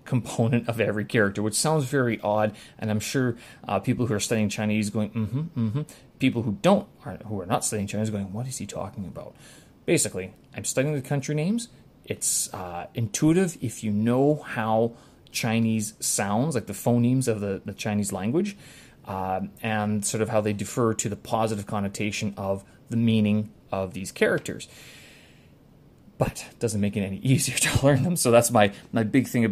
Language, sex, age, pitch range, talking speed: English, male, 30-49, 105-130 Hz, 190 wpm